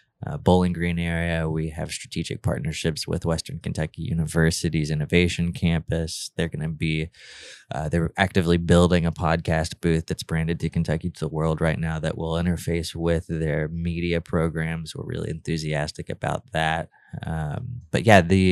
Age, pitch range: 20-39, 80-85 Hz